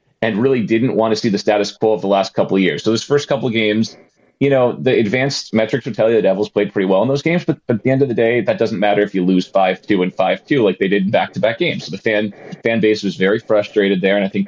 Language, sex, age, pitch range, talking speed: English, male, 30-49, 100-115 Hz, 300 wpm